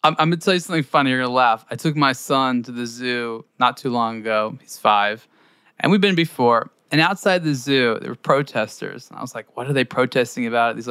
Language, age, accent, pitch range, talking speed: English, 20-39, American, 130-195 Hz, 235 wpm